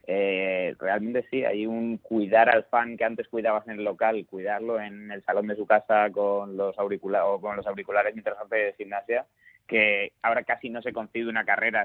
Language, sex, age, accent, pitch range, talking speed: Spanish, male, 30-49, Spanish, 100-120 Hz, 195 wpm